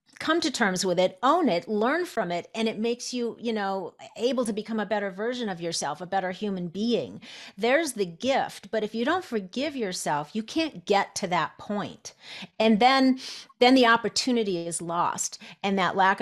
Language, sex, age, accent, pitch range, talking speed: English, female, 40-59, American, 170-220 Hz, 195 wpm